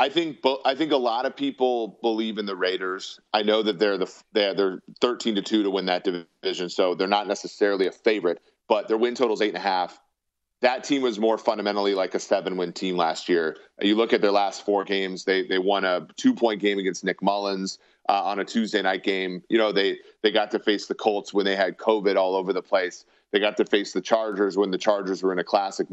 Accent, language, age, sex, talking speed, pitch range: American, English, 30-49, male, 250 wpm, 95-130 Hz